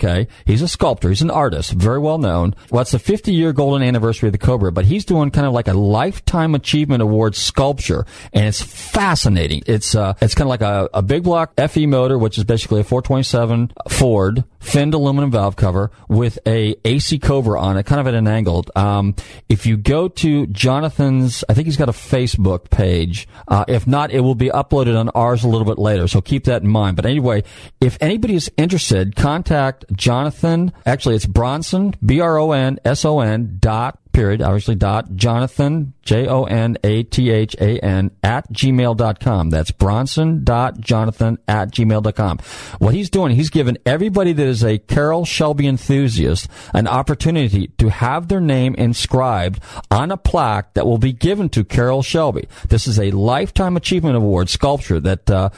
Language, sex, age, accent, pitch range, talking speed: English, male, 40-59, American, 105-140 Hz, 185 wpm